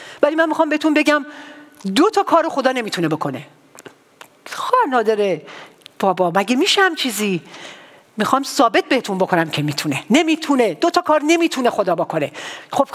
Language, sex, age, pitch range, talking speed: English, female, 50-69, 200-285 Hz, 140 wpm